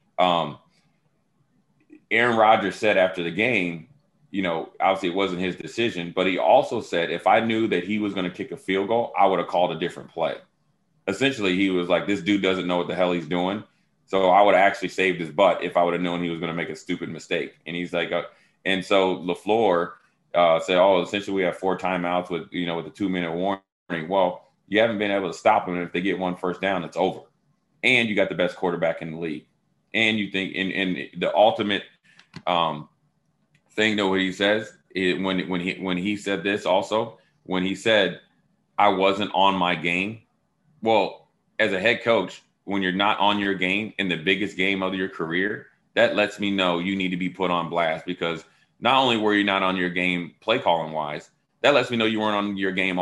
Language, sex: English, male